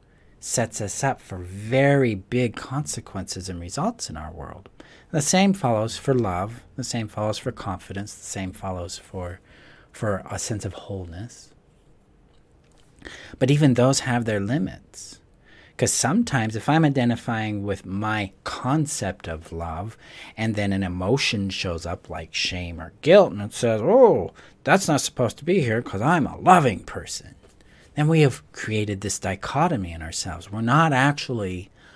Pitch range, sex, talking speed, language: 95-130 Hz, male, 155 wpm, English